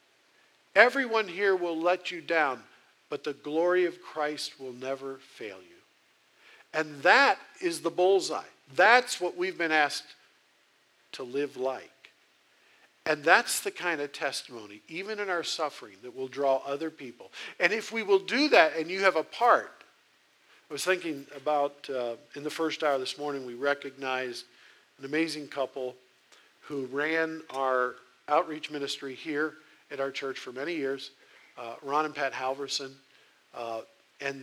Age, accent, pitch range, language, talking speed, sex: 50-69, American, 140-180 Hz, English, 155 wpm, male